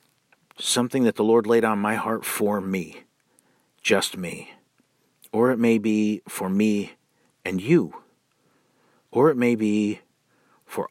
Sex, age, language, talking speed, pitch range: male, 50-69, English, 140 wpm, 100-110 Hz